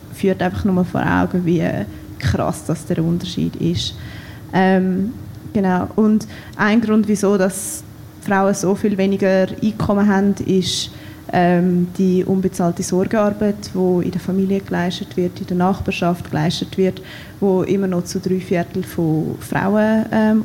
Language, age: English, 20-39